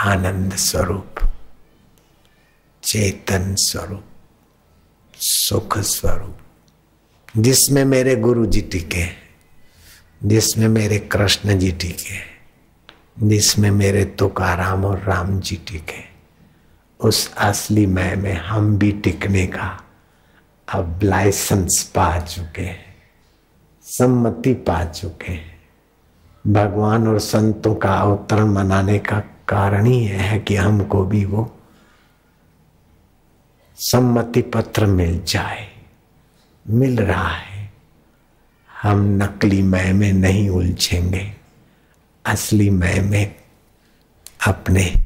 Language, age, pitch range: Hindi, 60-79, 90-105 Hz